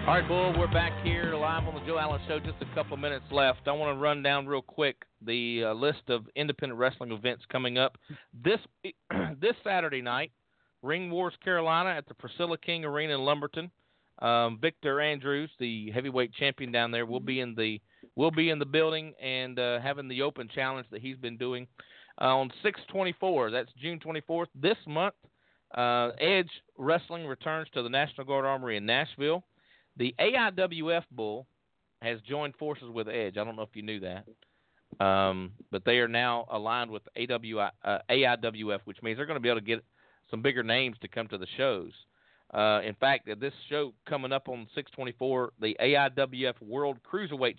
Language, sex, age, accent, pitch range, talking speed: English, male, 40-59, American, 120-150 Hz, 190 wpm